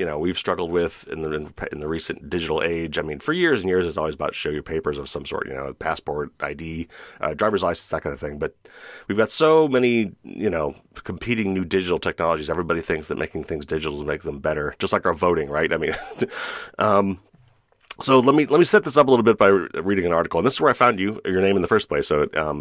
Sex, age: male, 30-49